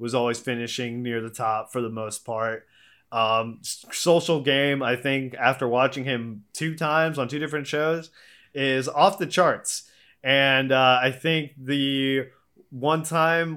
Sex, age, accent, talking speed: male, 20-39, American, 155 wpm